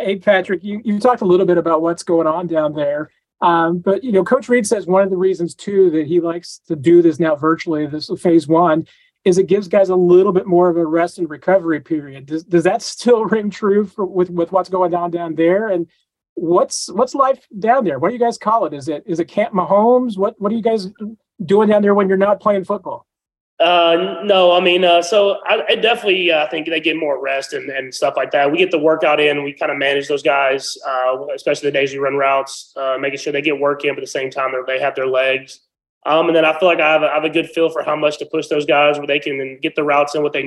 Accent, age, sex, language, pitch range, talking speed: American, 30-49, male, English, 150-190 Hz, 270 wpm